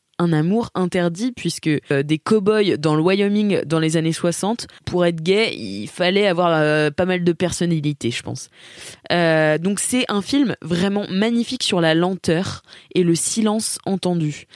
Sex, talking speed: female, 170 wpm